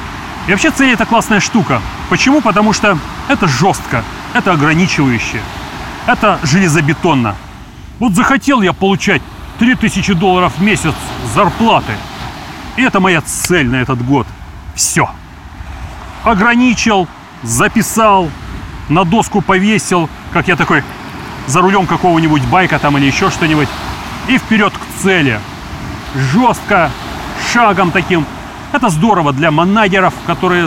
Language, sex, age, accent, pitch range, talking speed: Russian, male, 30-49, native, 145-215 Hz, 115 wpm